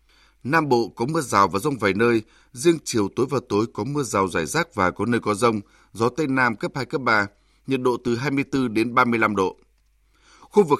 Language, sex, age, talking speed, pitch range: Vietnamese, male, 20-39, 220 wpm, 110-145 Hz